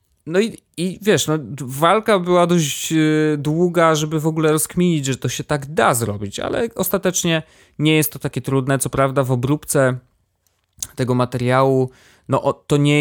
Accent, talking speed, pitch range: native, 155 wpm, 115-145 Hz